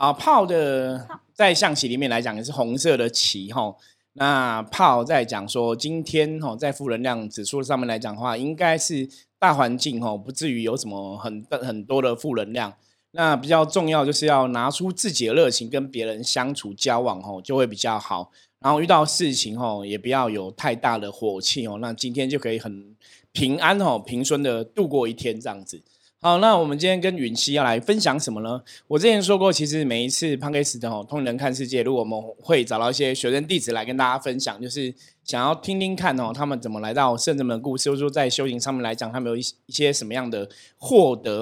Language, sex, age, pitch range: Chinese, male, 20-39, 115-145 Hz